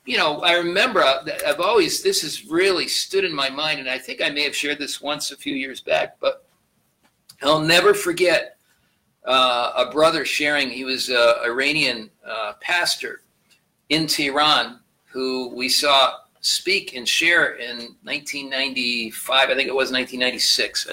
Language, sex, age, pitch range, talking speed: English, male, 50-69, 135-190 Hz, 145 wpm